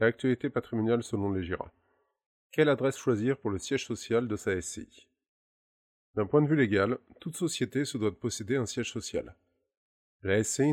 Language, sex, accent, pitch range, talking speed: French, male, French, 100-135 Hz, 180 wpm